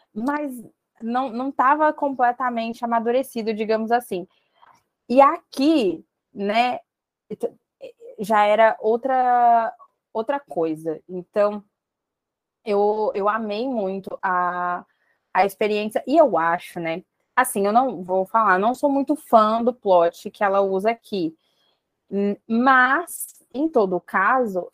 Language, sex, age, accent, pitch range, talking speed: Portuguese, female, 20-39, Brazilian, 200-260 Hz, 115 wpm